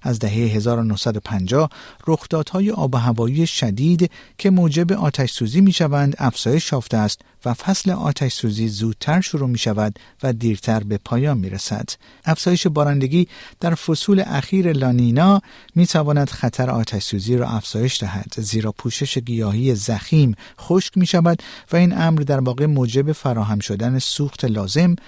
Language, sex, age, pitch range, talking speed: Persian, male, 50-69, 115-160 Hz, 145 wpm